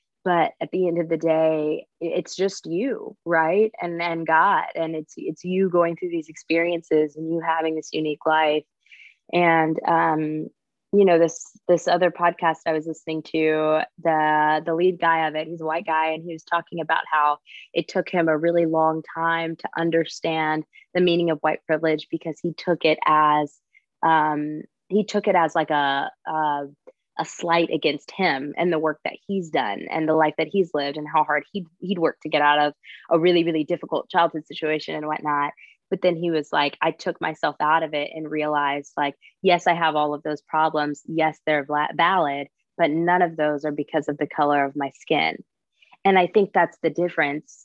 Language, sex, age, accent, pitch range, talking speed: English, female, 20-39, American, 155-170 Hz, 200 wpm